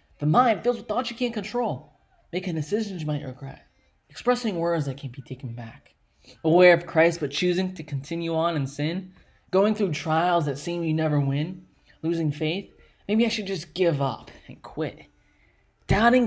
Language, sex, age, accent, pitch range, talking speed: English, male, 20-39, American, 165-245 Hz, 180 wpm